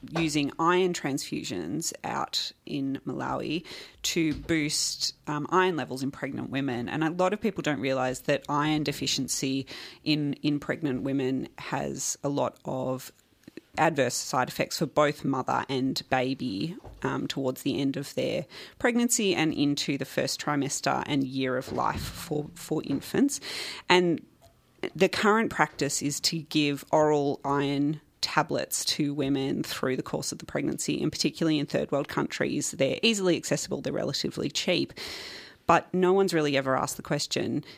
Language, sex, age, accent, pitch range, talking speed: English, female, 30-49, Australian, 135-165 Hz, 155 wpm